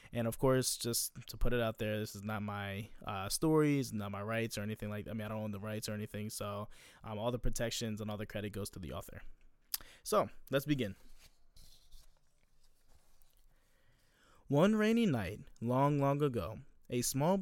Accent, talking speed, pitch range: American, 190 wpm, 105-135 Hz